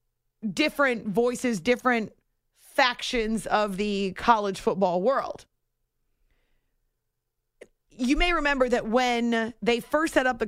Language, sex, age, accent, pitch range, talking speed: English, female, 30-49, American, 215-265 Hz, 110 wpm